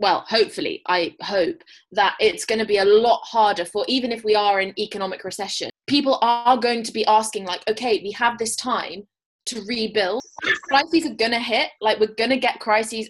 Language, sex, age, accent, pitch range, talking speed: English, female, 20-39, British, 195-265 Hz, 205 wpm